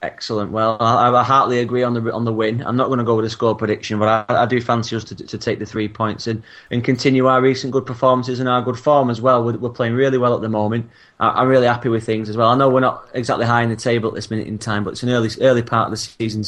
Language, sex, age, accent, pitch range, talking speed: English, male, 30-49, British, 110-130 Hz, 300 wpm